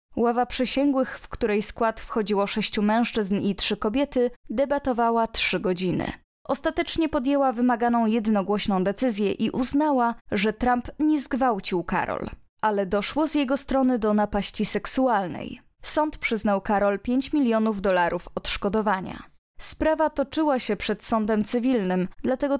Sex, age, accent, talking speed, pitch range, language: female, 20-39, native, 125 wpm, 205-260 Hz, Polish